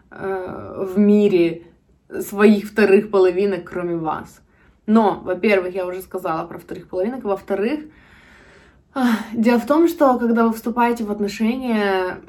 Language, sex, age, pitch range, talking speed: Russian, female, 20-39, 180-215 Hz, 120 wpm